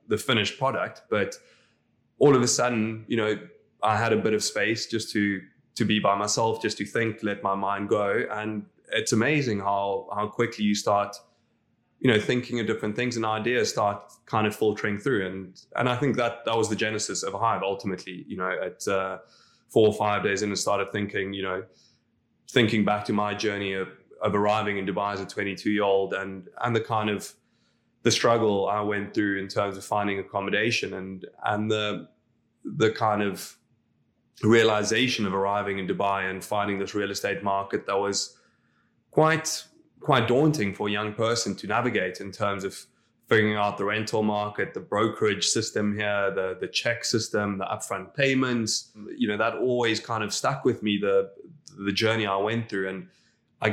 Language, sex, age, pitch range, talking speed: English, male, 20-39, 100-110 Hz, 190 wpm